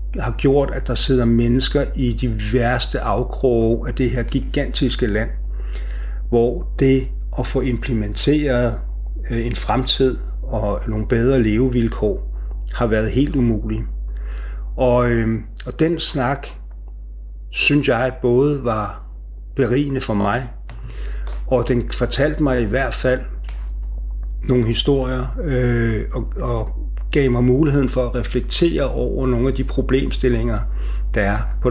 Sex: male